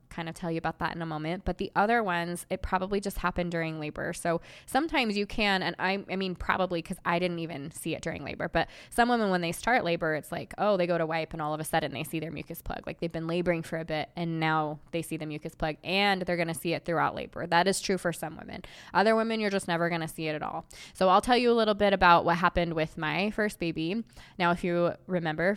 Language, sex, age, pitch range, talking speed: English, female, 20-39, 165-195 Hz, 275 wpm